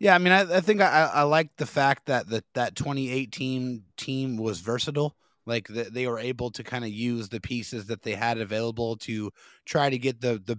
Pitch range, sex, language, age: 115-135 Hz, male, English, 20-39